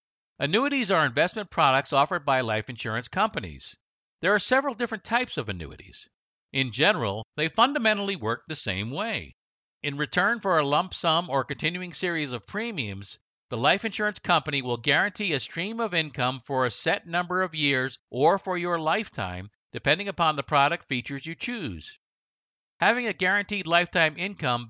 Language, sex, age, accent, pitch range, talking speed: English, male, 50-69, American, 130-185 Hz, 165 wpm